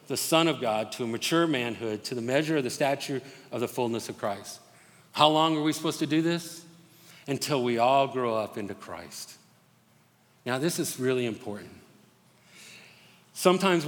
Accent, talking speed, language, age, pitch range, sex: American, 175 wpm, English, 50-69, 125-185 Hz, male